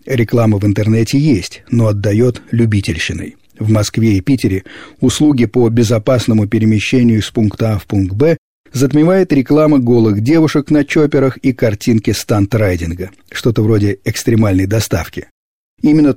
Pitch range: 100-135 Hz